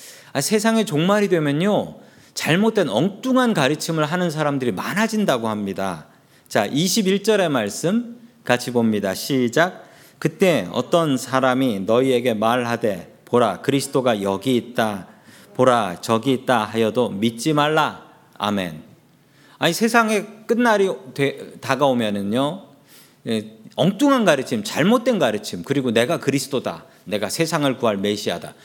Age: 40-59